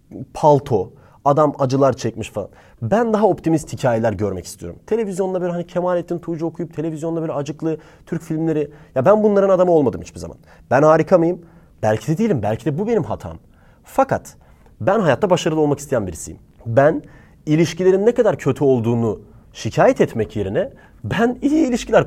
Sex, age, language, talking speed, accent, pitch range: male, 30-49, English, 160 wpm, Turkish, 115-170 Hz